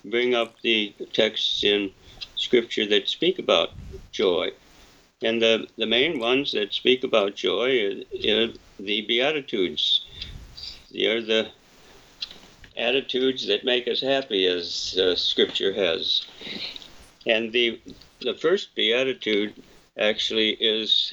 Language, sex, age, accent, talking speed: English, male, 60-79, American, 115 wpm